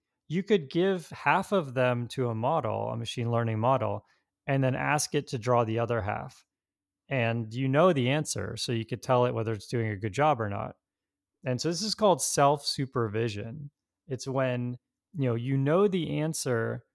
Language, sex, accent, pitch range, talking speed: English, male, American, 115-140 Hz, 190 wpm